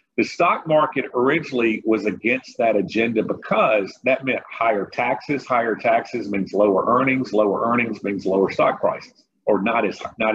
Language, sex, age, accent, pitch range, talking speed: English, male, 50-69, American, 105-125 Hz, 160 wpm